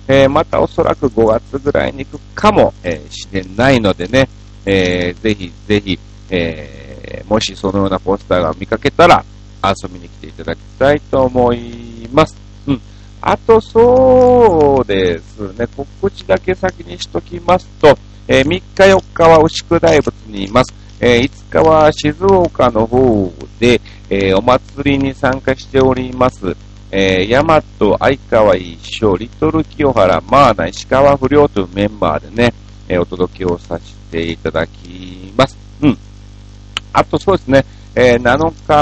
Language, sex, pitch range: Japanese, male, 100-135 Hz